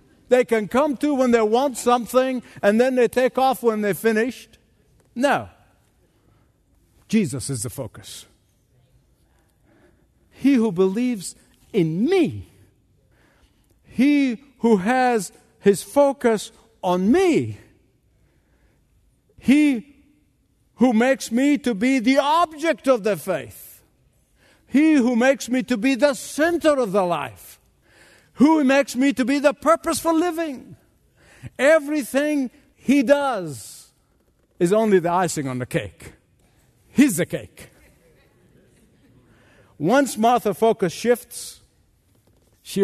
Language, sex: English, male